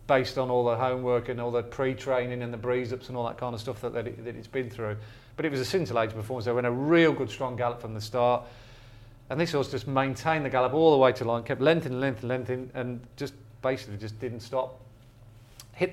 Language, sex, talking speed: English, male, 255 wpm